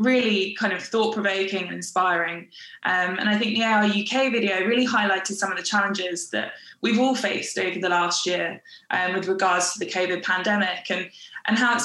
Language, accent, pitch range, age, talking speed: English, British, 185-220 Hz, 20-39, 195 wpm